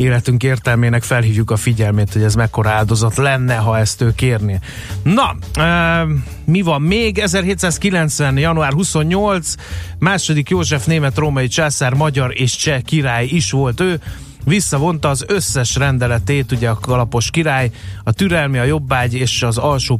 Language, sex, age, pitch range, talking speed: Hungarian, male, 30-49, 115-150 Hz, 140 wpm